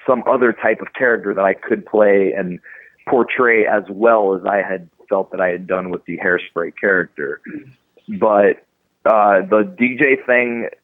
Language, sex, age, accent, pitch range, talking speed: English, male, 30-49, American, 95-115 Hz, 165 wpm